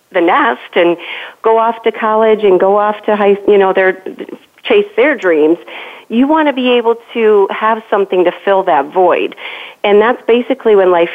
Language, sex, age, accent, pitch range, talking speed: English, female, 40-59, American, 170-215 Hz, 190 wpm